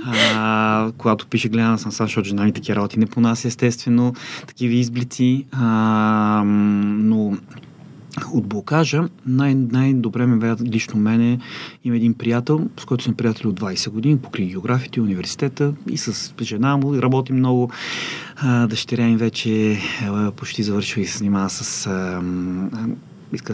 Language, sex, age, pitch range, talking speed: Bulgarian, male, 30-49, 110-130 Hz, 150 wpm